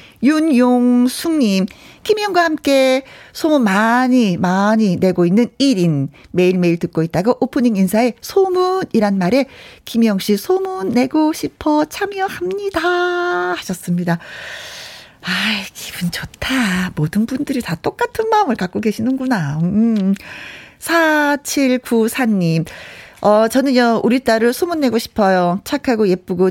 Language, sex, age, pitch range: Korean, female, 40-59, 180-255 Hz